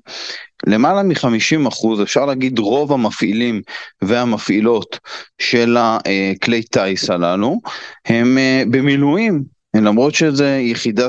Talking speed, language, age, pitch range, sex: 90 wpm, Hebrew, 30-49, 110-135 Hz, male